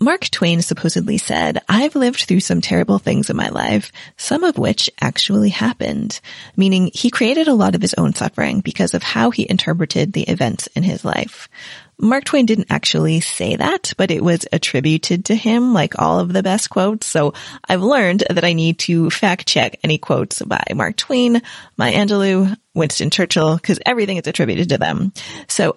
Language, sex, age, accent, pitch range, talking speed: English, female, 20-39, American, 170-215 Hz, 185 wpm